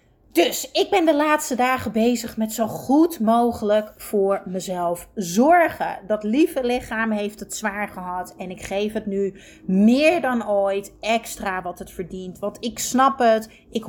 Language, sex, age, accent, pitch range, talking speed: Dutch, female, 30-49, Dutch, 205-285 Hz, 165 wpm